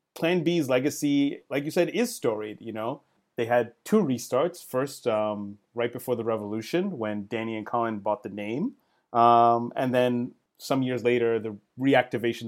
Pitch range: 110-140 Hz